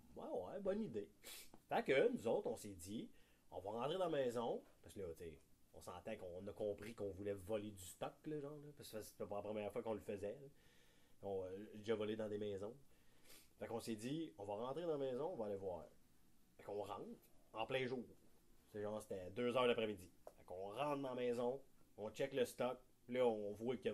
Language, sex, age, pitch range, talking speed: French, male, 30-49, 100-135 Hz, 235 wpm